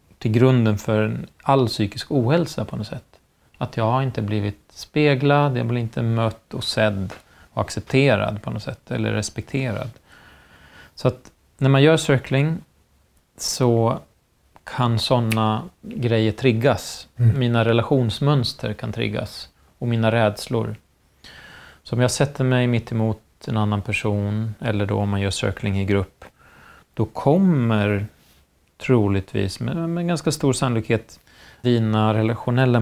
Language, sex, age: Swedish, male, 30-49